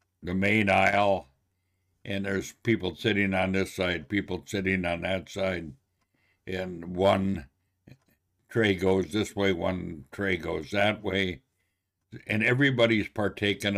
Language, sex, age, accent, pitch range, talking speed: English, male, 60-79, American, 95-105 Hz, 125 wpm